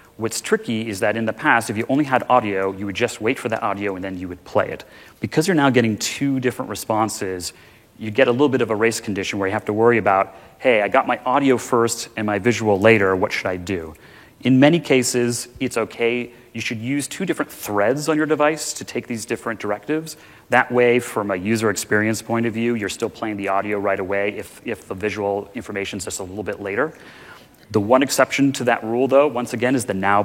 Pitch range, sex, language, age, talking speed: 100-125 Hz, male, English, 30-49, 235 wpm